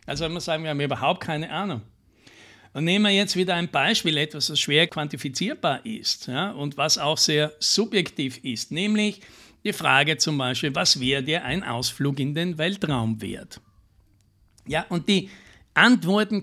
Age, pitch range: 60-79, 150-195 Hz